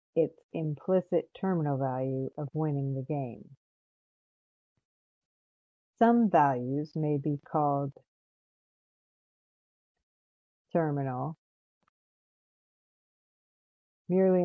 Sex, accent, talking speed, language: female, American, 60 wpm, English